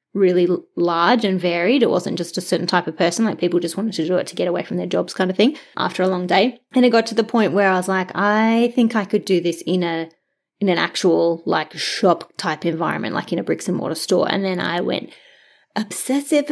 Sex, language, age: female, English, 20-39